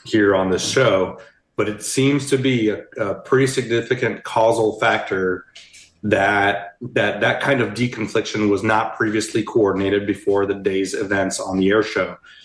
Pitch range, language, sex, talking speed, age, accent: 100-120 Hz, English, male, 160 wpm, 30-49, American